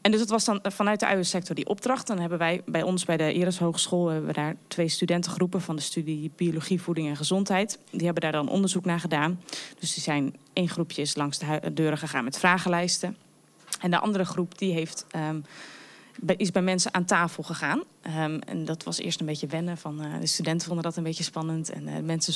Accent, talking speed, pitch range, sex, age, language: Dutch, 225 wpm, 160-190 Hz, female, 20-39, Dutch